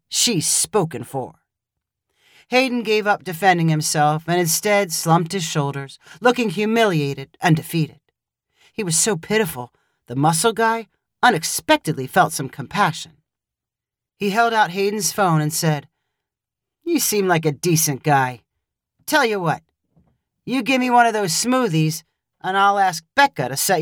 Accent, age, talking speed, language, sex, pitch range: American, 40-59, 145 wpm, English, male, 150-210 Hz